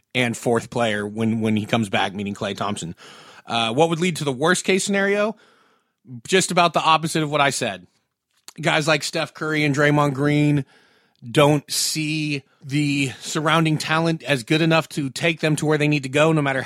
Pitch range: 130-155 Hz